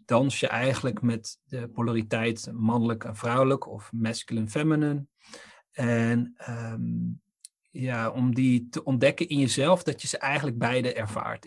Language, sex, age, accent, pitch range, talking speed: Dutch, male, 40-59, Dutch, 115-140 Hz, 140 wpm